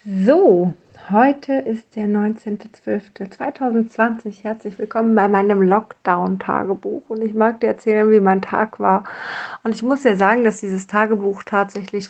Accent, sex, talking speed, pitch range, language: German, female, 140 wpm, 190-220 Hz, German